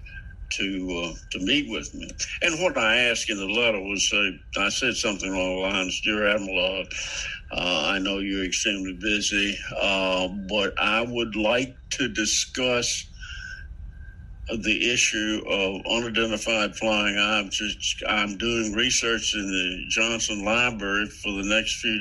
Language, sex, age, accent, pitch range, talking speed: English, male, 60-79, American, 95-115 Hz, 145 wpm